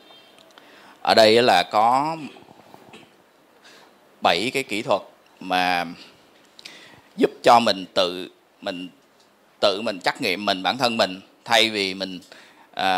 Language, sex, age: English, male, 20-39